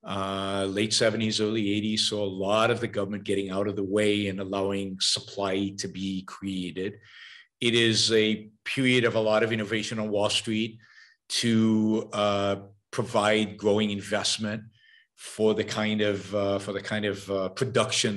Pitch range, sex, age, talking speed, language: 100-125 Hz, male, 50-69, 165 wpm, English